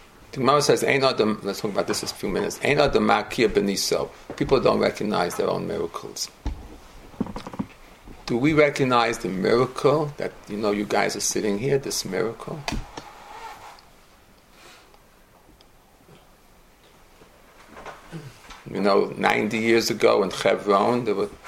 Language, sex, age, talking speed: English, male, 50-69, 110 wpm